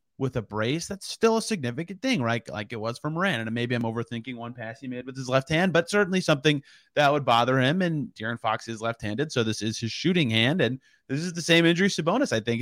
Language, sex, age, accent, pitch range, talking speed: English, male, 30-49, American, 115-160 Hz, 250 wpm